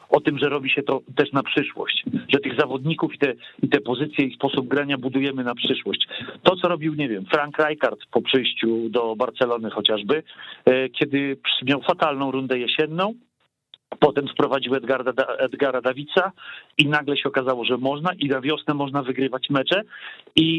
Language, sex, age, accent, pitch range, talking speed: Polish, male, 40-59, native, 130-150 Hz, 165 wpm